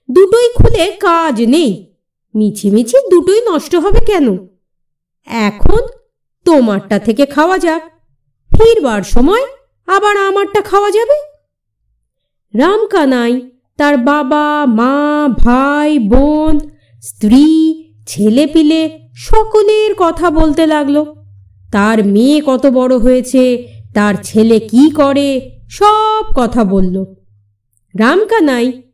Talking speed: 95 wpm